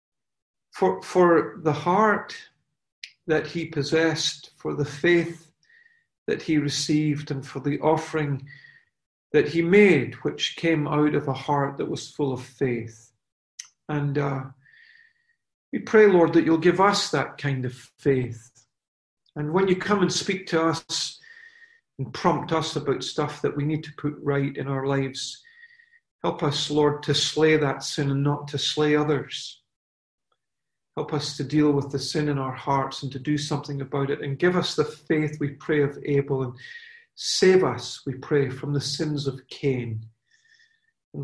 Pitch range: 140-165 Hz